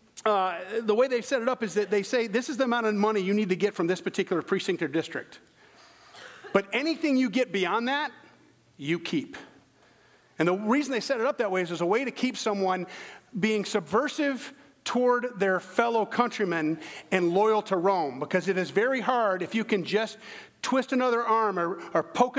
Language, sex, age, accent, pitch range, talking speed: English, male, 40-59, American, 185-245 Hz, 205 wpm